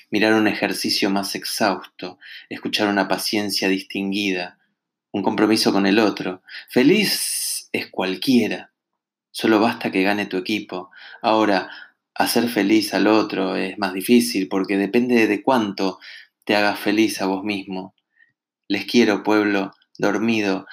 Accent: Argentinian